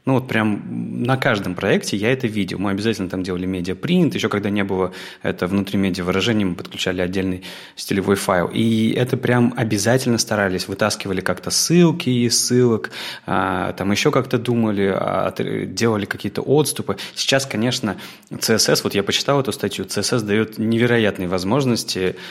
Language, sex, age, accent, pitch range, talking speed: Russian, male, 20-39, native, 95-125 Hz, 150 wpm